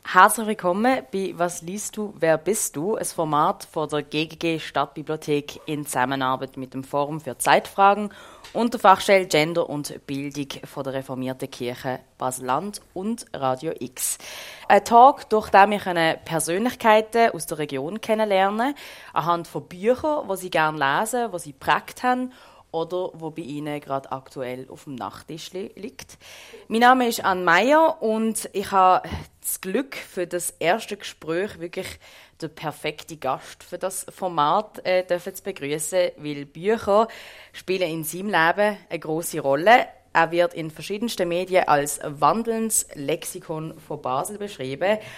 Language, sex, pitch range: German, female, 150-200 Hz